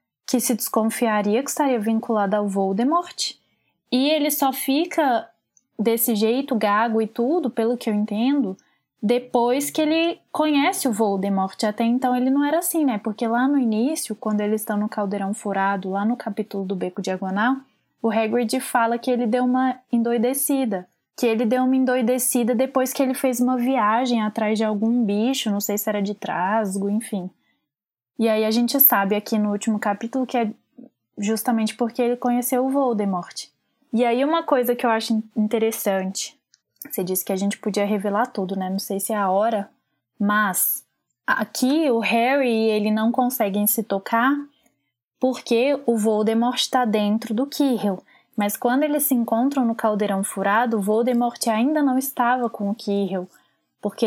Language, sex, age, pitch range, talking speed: Portuguese, female, 10-29, 210-255 Hz, 170 wpm